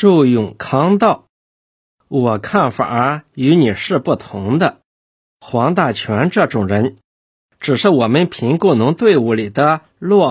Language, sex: Chinese, male